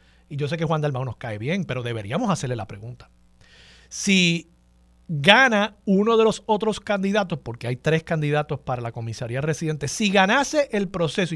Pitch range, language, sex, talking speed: 130-195 Hz, Spanish, male, 175 wpm